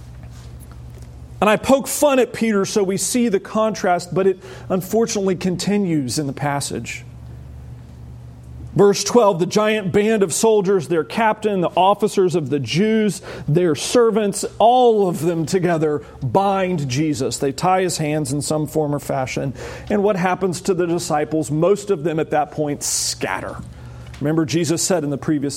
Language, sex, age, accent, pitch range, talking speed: English, male, 40-59, American, 135-200 Hz, 160 wpm